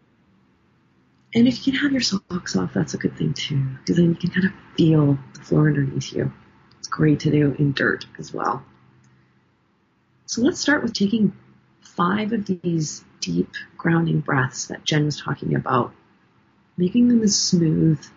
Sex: female